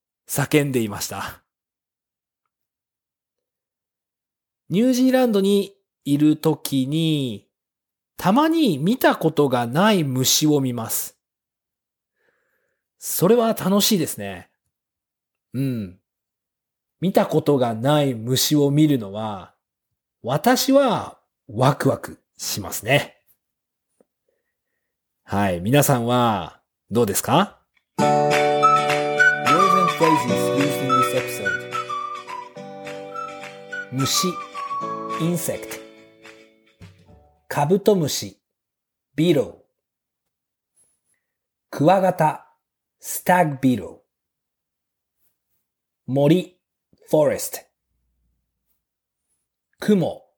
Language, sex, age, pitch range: Japanese, male, 40-59, 110-185 Hz